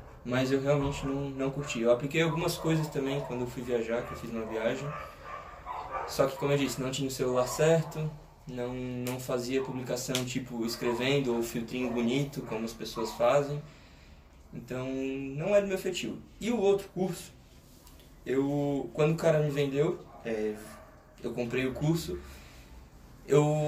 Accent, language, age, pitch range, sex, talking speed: Brazilian, Portuguese, 20-39, 120-150 Hz, male, 160 wpm